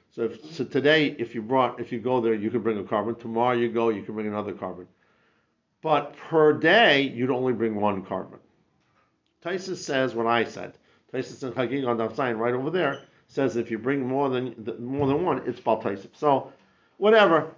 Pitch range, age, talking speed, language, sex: 115-150 Hz, 50-69, 200 wpm, English, male